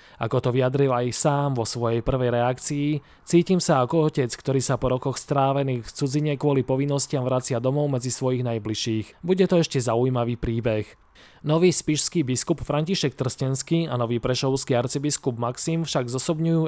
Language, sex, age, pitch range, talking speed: Slovak, male, 20-39, 125-160 Hz, 160 wpm